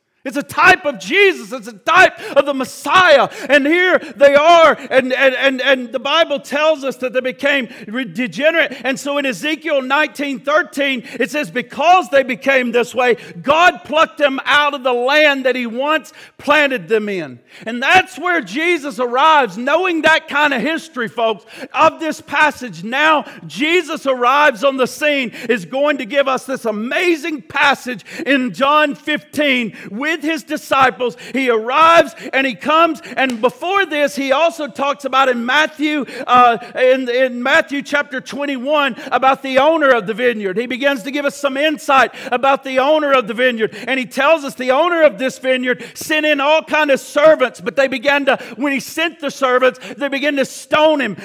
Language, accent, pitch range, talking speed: English, American, 255-300 Hz, 180 wpm